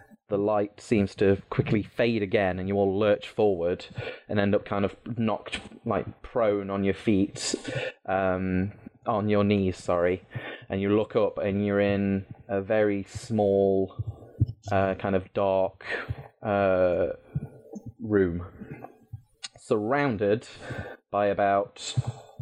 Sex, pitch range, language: male, 95-115 Hz, English